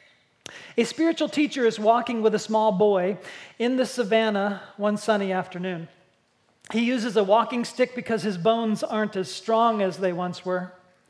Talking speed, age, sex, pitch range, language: 160 wpm, 40-59, male, 195-240 Hz, English